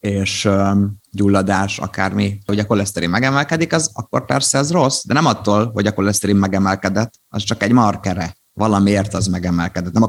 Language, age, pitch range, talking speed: Hungarian, 30-49, 90-105 Hz, 165 wpm